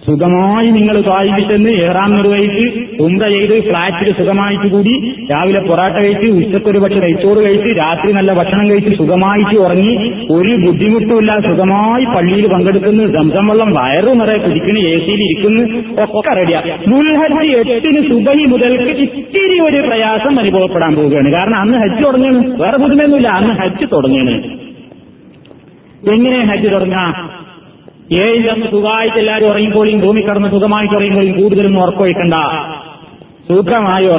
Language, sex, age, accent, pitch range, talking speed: Malayalam, male, 30-49, native, 180-225 Hz, 125 wpm